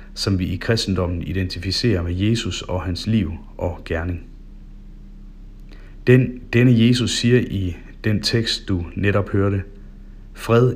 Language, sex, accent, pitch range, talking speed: Danish, male, native, 90-110 Hz, 130 wpm